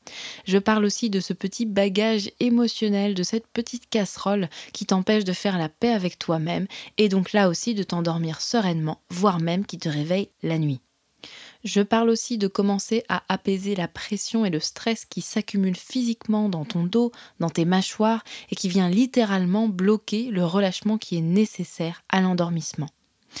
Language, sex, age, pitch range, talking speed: French, female, 20-39, 180-220 Hz, 170 wpm